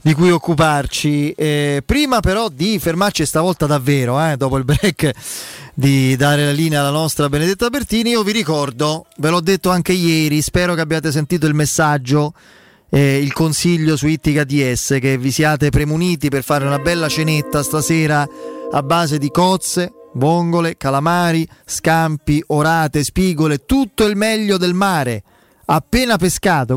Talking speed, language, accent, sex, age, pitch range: 150 wpm, Italian, native, male, 30-49, 145-190 Hz